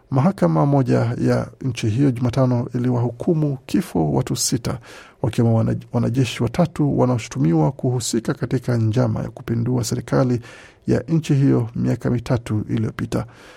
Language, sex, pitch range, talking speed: Swahili, male, 120-140 Hz, 115 wpm